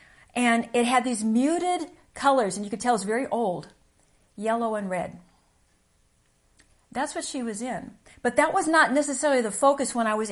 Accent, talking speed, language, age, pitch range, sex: American, 180 wpm, English, 50-69, 200-250 Hz, female